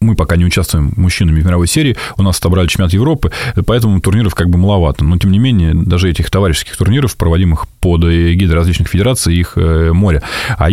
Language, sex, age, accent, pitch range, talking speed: Russian, male, 20-39, native, 85-110 Hz, 190 wpm